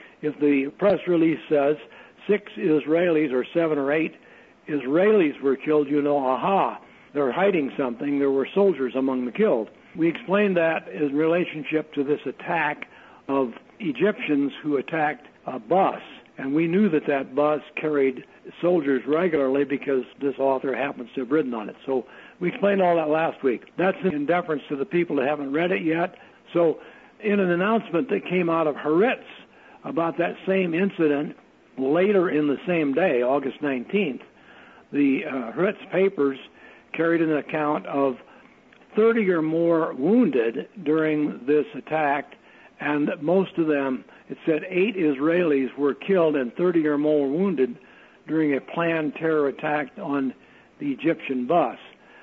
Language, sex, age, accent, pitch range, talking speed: English, male, 60-79, American, 140-175 Hz, 155 wpm